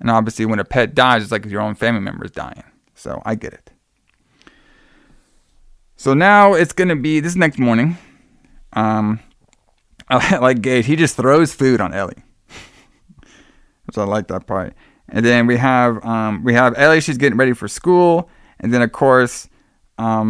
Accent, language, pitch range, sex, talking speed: American, English, 115-150 Hz, male, 170 wpm